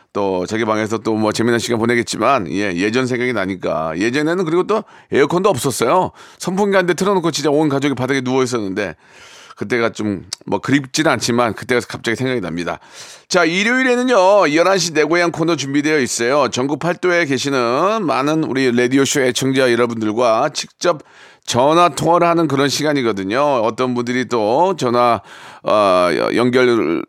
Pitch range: 120-175 Hz